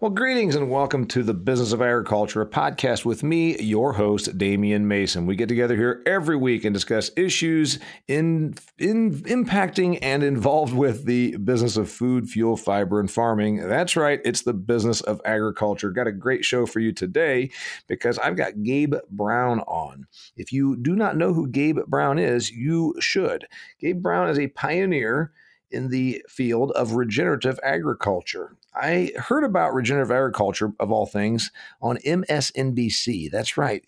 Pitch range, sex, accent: 115-165 Hz, male, American